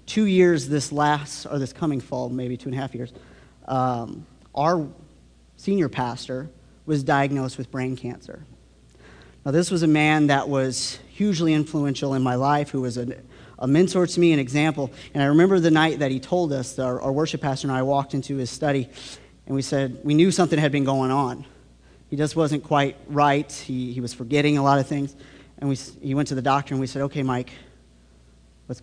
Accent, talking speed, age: American, 205 wpm, 30-49